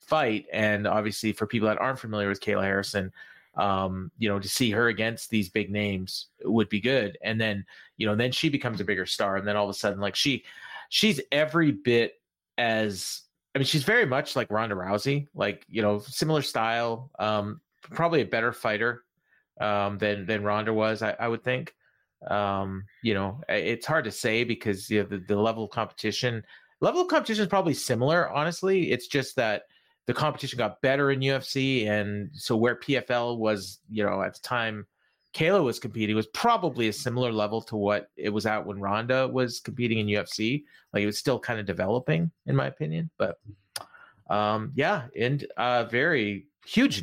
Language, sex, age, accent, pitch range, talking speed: English, male, 30-49, American, 105-135 Hz, 190 wpm